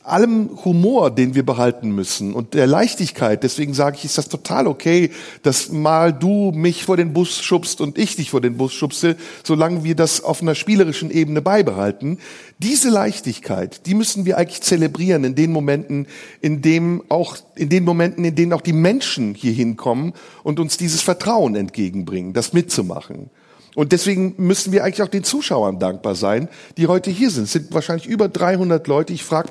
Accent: German